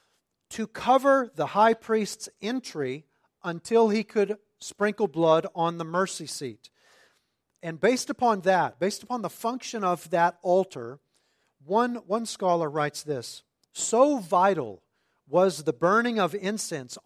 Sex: male